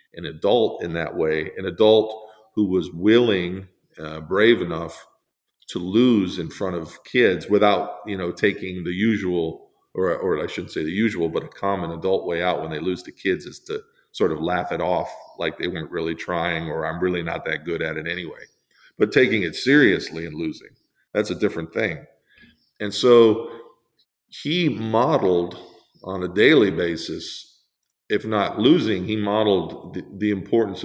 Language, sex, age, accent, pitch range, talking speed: English, male, 40-59, American, 85-110 Hz, 175 wpm